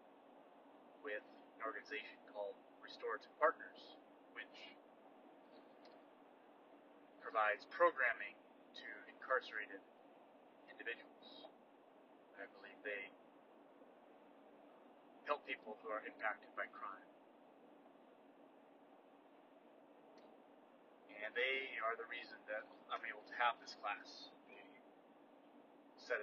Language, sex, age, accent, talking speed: English, male, 30-49, American, 80 wpm